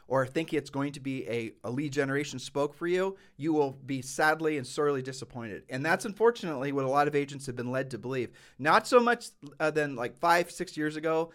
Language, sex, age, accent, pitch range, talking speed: English, male, 30-49, American, 125-155 Hz, 220 wpm